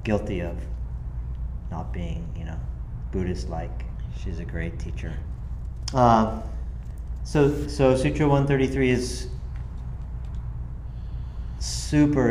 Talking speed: 95 wpm